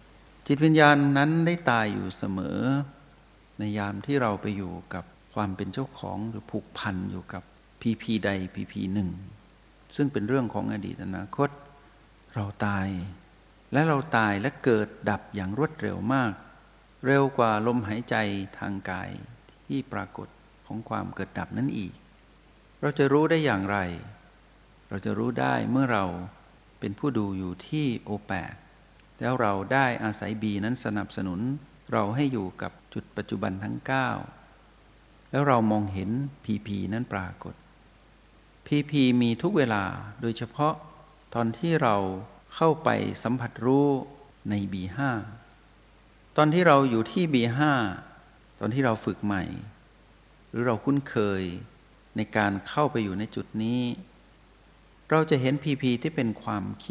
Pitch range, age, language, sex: 100-135 Hz, 60-79, Thai, male